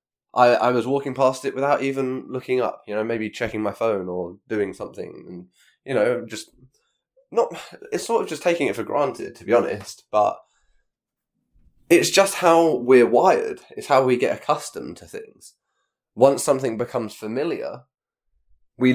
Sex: male